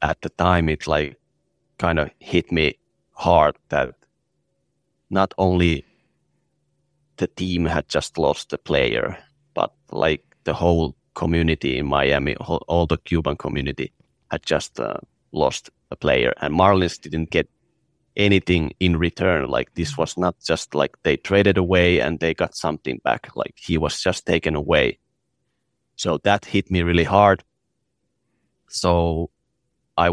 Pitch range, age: 80-95 Hz, 30-49